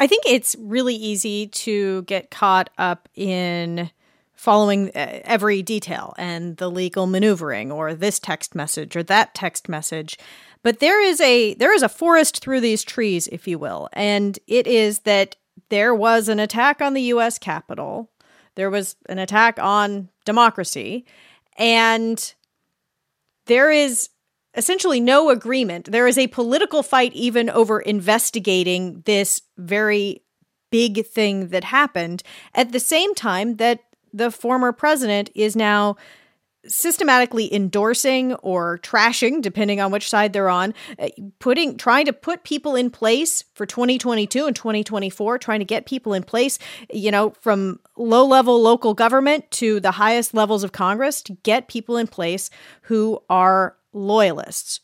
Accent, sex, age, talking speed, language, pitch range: American, female, 40-59, 145 wpm, English, 195-245 Hz